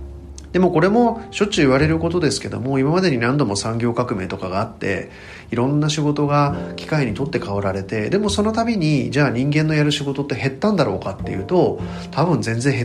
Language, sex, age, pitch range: Japanese, male, 40-59, 105-170 Hz